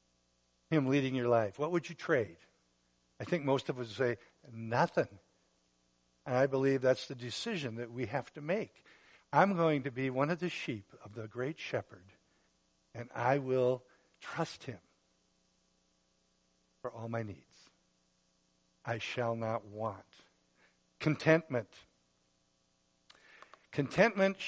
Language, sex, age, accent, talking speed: English, male, 60-79, American, 130 wpm